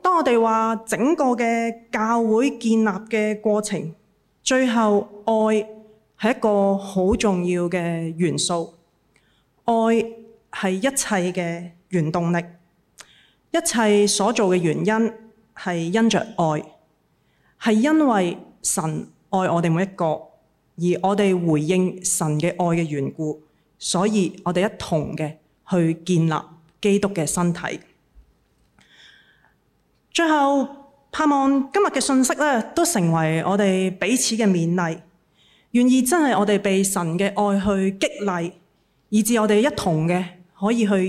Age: 30-49